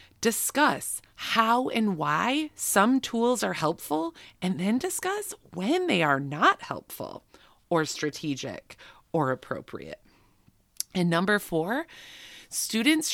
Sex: female